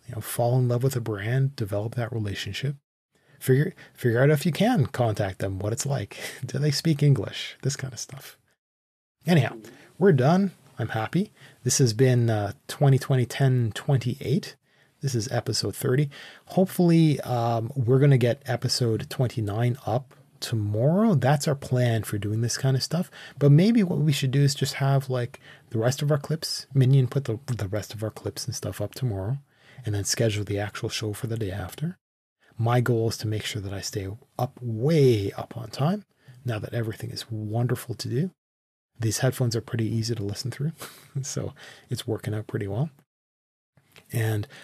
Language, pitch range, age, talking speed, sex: English, 110-140 Hz, 30-49, 185 wpm, male